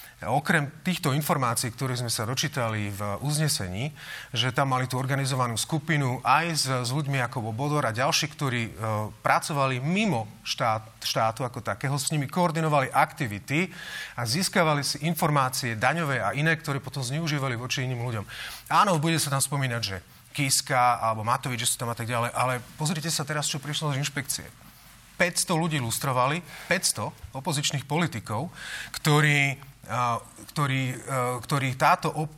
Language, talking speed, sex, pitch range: Slovak, 155 wpm, male, 120-155 Hz